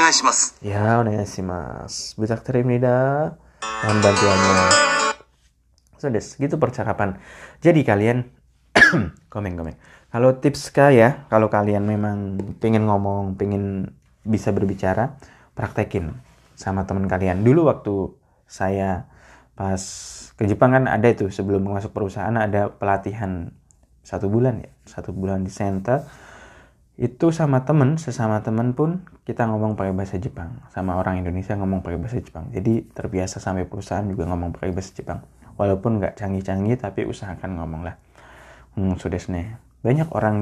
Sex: male